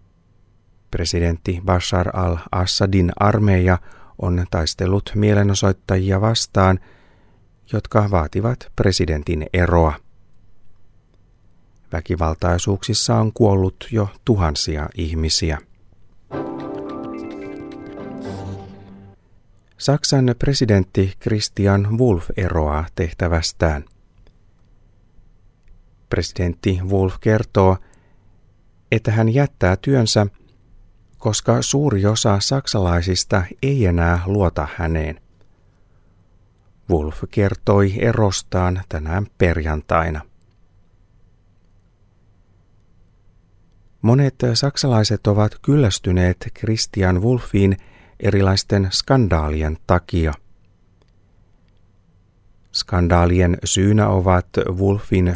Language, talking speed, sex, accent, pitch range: Finnish, 60 wpm, male, native, 90-105 Hz